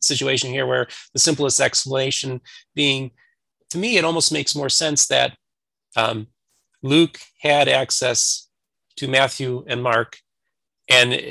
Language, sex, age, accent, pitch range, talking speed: English, male, 30-49, American, 120-150 Hz, 125 wpm